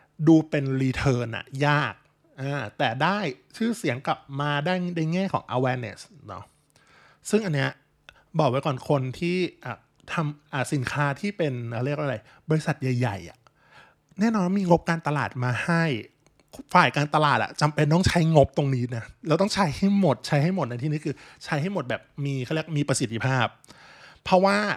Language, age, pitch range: Thai, 20-39, 125-160 Hz